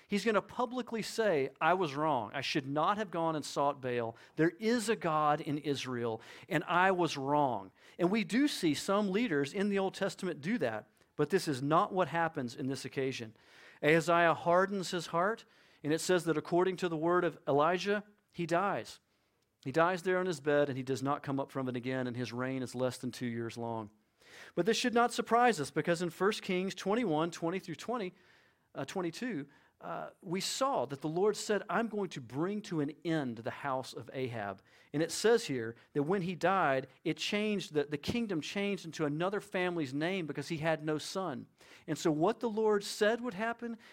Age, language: 40-59, English